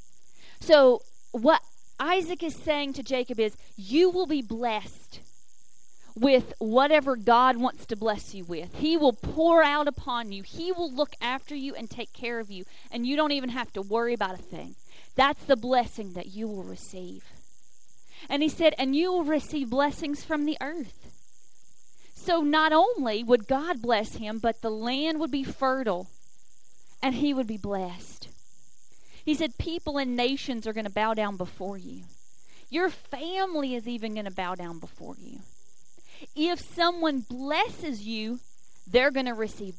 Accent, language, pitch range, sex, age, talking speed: American, English, 210-290 Hz, female, 30-49, 170 wpm